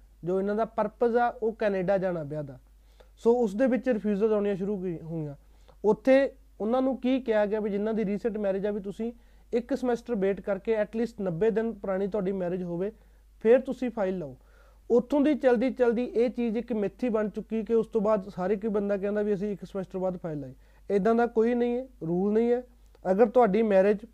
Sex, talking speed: male, 205 wpm